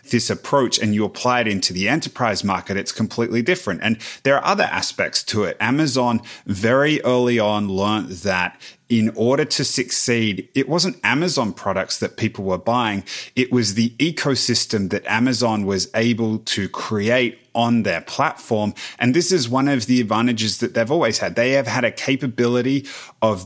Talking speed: 175 wpm